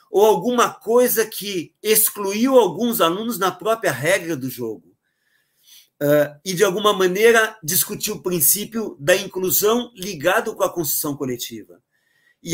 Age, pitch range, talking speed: 50-69, 150-215 Hz, 130 wpm